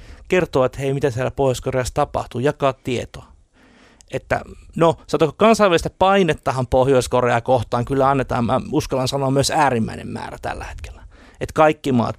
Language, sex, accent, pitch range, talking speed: Finnish, male, native, 115-145 Hz, 140 wpm